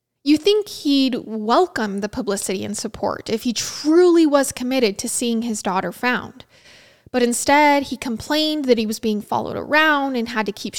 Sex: female